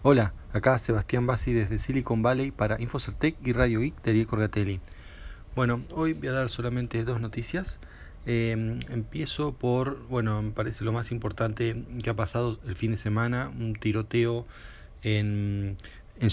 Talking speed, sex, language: 160 wpm, male, Spanish